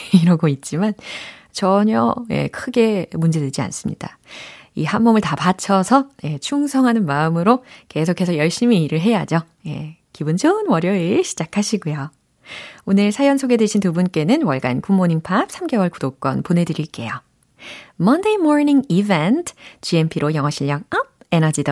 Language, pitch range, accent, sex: Korean, 160-260 Hz, native, female